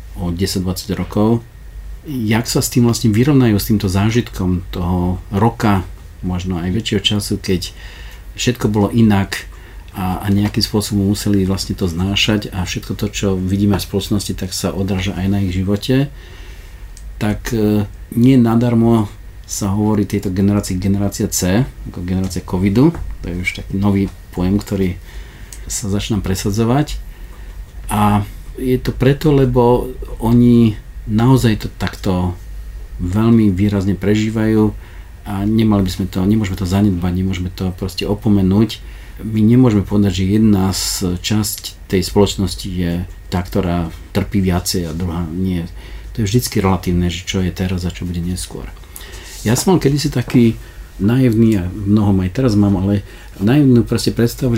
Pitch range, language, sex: 90-110 Hz, Slovak, male